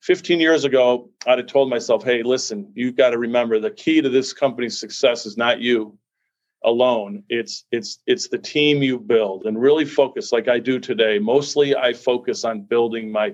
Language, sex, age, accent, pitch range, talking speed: English, male, 40-59, American, 120-155 Hz, 195 wpm